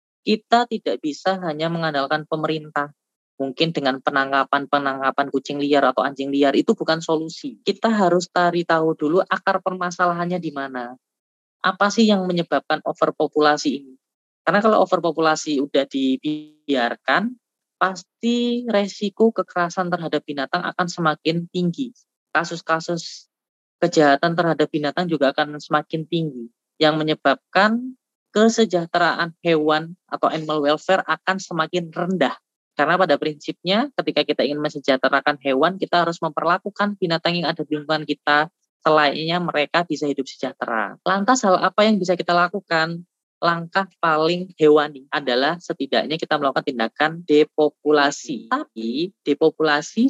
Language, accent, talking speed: Indonesian, native, 125 wpm